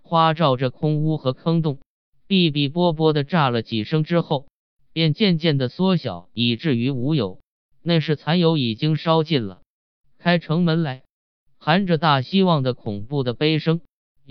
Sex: male